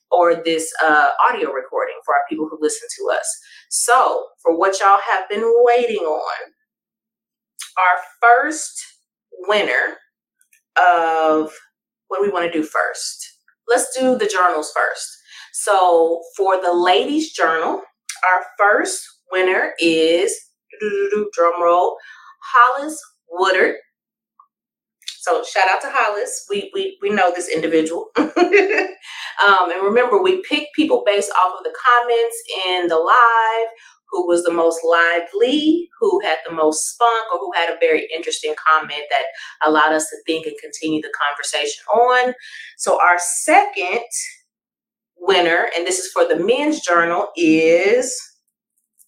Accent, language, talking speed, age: American, English, 135 wpm, 30-49